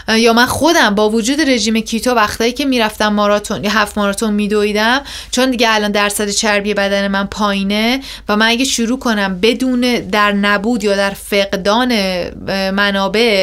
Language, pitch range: Persian, 205-245 Hz